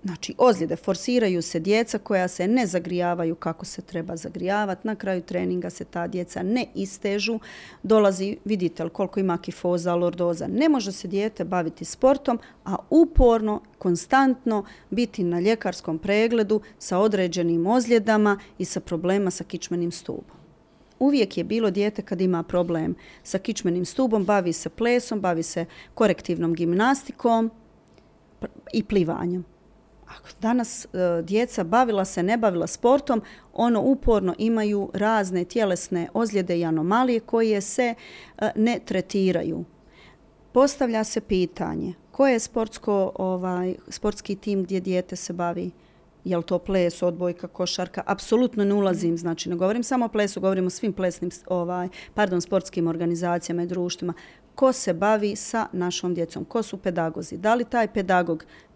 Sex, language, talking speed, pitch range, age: female, Croatian, 140 wpm, 175-220 Hz, 40-59